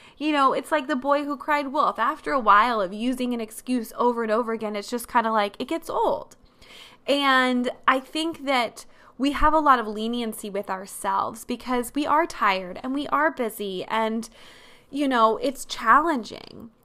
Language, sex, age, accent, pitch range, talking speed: English, female, 20-39, American, 210-275 Hz, 190 wpm